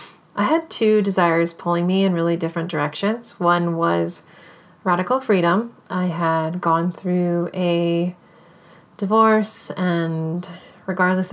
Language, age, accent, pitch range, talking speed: English, 30-49, American, 165-190 Hz, 115 wpm